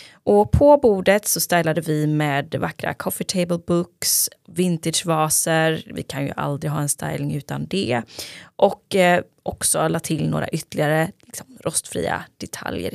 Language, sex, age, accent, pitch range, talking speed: Swedish, female, 20-39, native, 155-210 Hz, 150 wpm